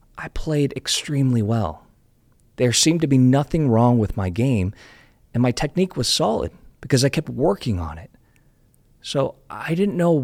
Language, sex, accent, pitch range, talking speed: English, male, American, 105-135 Hz, 165 wpm